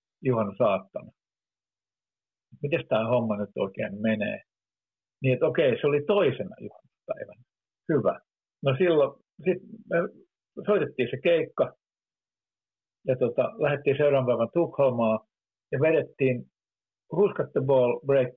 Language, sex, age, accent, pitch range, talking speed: Finnish, male, 50-69, native, 110-145 Hz, 110 wpm